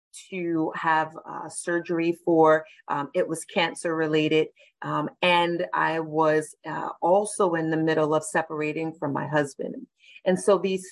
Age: 30-49